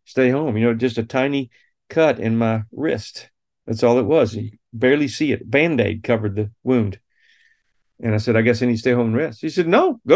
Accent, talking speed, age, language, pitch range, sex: American, 230 wpm, 40-59, English, 125-185 Hz, male